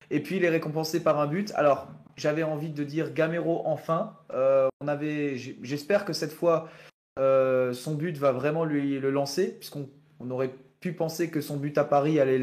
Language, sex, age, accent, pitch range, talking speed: French, male, 20-39, French, 130-160 Hz, 200 wpm